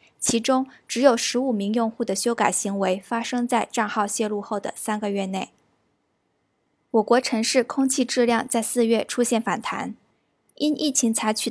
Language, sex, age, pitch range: Chinese, female, 10-29, 215-250 Hz